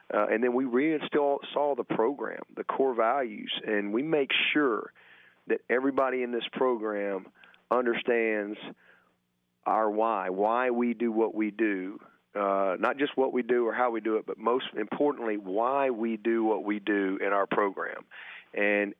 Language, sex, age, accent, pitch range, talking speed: English, male, 40-59, American, 110-130 Hz, 165 wpm